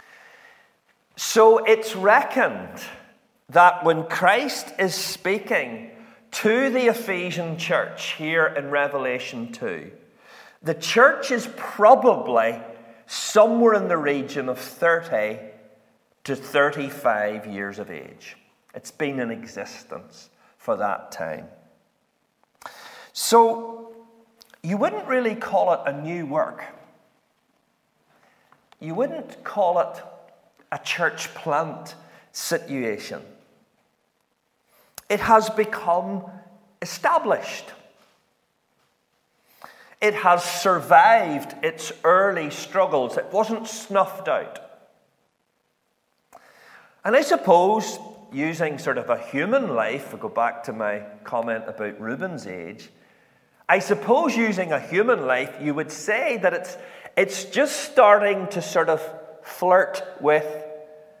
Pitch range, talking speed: 145-220 Hz, 105 wpm